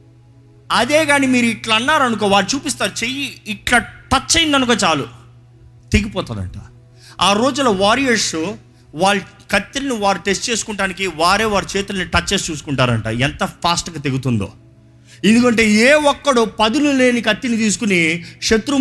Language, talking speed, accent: Telugu, 125 wpm, native